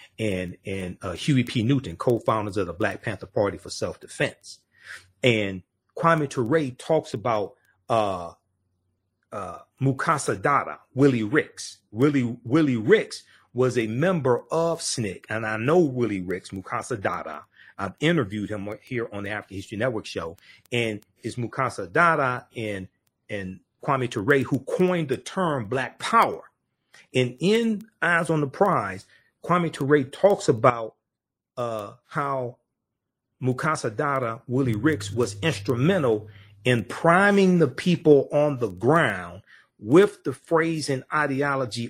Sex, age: male, 40-59